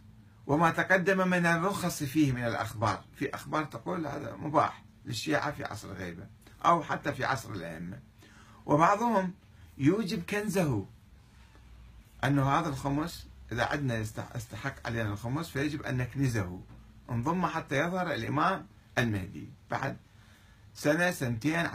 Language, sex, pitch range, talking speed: Arabic, male, 110-150 Hz, 120 wpm